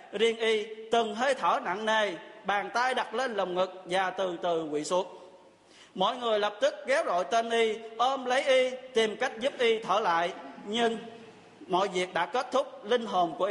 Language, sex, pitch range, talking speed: Vietnamese, male, 210-255 Hz, 195 wpm